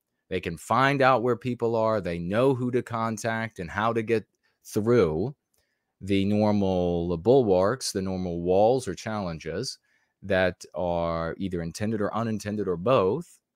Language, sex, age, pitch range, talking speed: English, male, 30-49, 90-120 Hz, 145 wpm